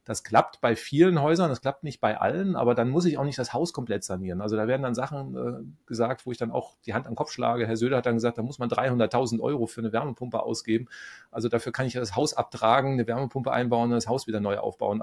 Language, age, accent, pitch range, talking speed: German, 30-49, German, 115-135 Hz, 265 wpm